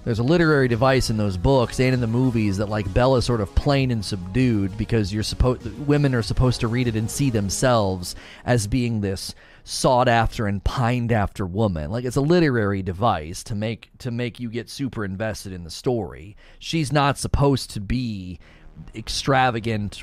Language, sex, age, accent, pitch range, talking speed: English, male, 30-49, American, 100-160 Hz, 185 wpm